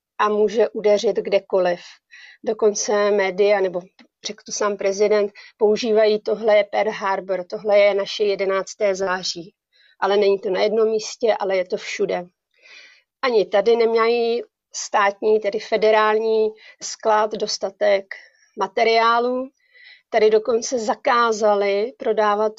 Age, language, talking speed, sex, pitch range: 40-59, Czech, 115 wpm, female, 200-225 Hz